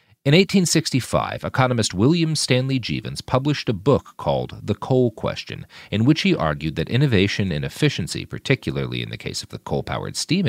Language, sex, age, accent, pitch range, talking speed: English, male, 40-59, American, 85-140 Hz, 165 wpm